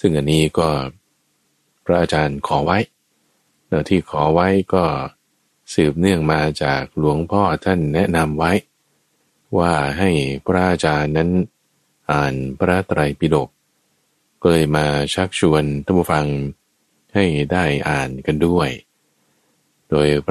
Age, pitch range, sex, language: 20-39, 75-90 Hz, male, Thai